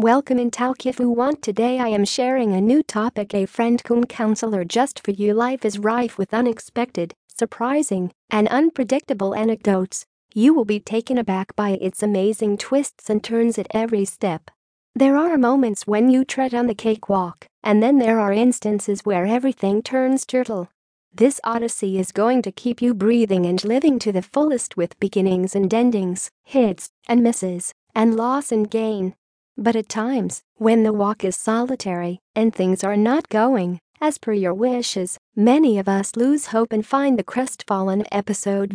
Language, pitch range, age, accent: English, 200-245 Hz, 40-59, American